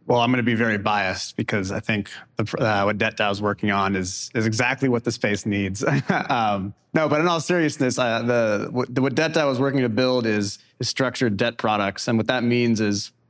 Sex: male